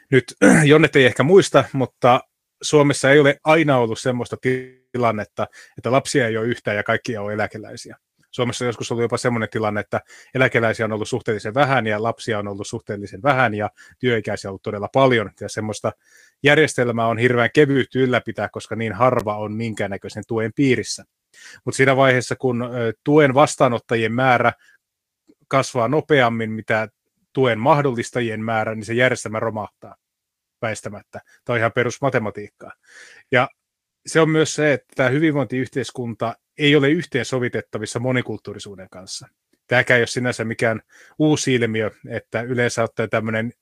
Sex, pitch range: male, 110-130 Hz